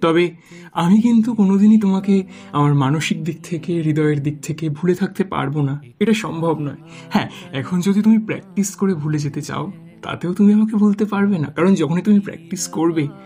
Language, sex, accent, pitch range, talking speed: Bengali, male, native, 145-195 Hz, 175 wpm